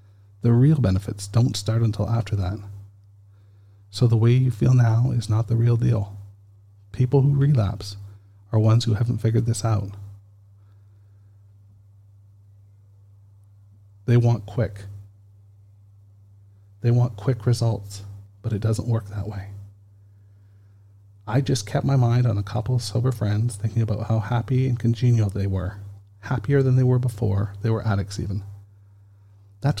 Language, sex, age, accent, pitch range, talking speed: English, male, 40-59, American, 100-120 Hz, 145 wpm